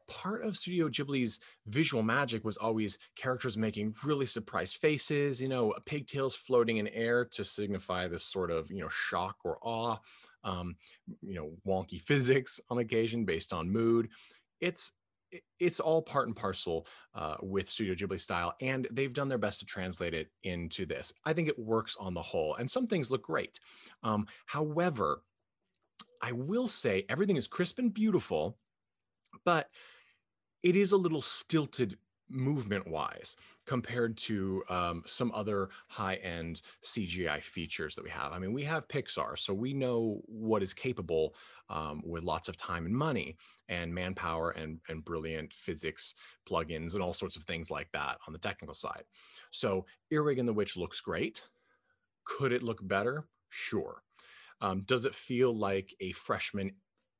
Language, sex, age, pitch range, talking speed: English, male, 30-49, 95-135 Hz, 165 wpm